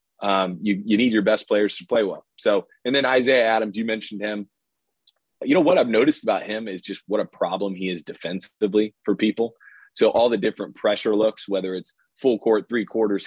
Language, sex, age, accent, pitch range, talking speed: English, male, 30-49, American, 100-120 Hz, 215 wpm